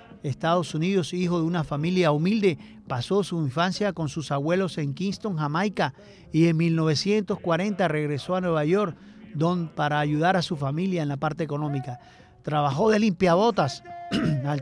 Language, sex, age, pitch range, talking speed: Spanish, male, 40-59, 150-195 Hz, 150 wpm